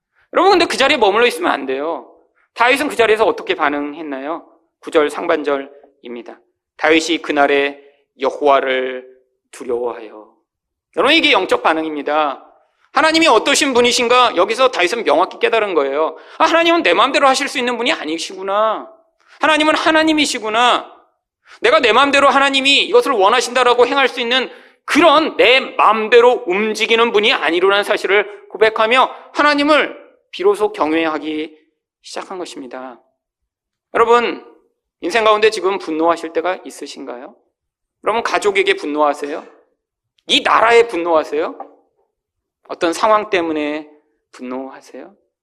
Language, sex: Korean, male